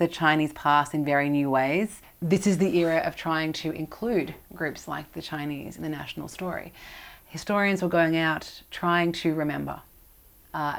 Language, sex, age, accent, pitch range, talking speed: English, female, 30-49, Australian, 150-180 Hz, 170 wpm